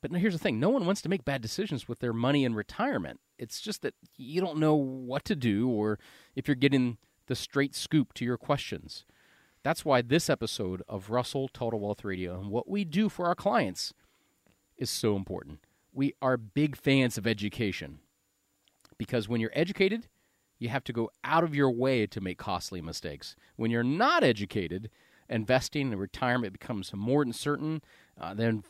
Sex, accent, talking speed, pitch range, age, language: male, American, 185 wpm, 105-150 Hz, 40-59, English